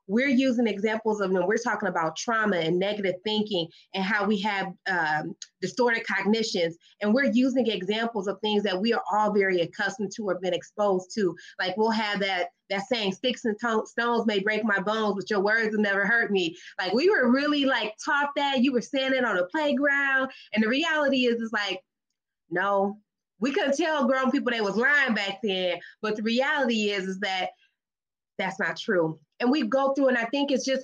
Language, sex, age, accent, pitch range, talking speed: English, female, 20-39, American, 195-245 Hz, 205 wpm